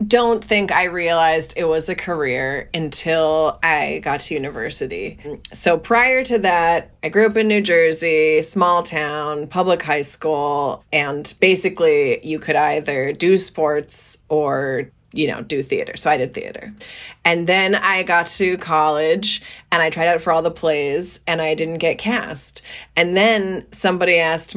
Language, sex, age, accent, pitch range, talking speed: English, female, 30-49, American, 155-195 Hz, 165 wpm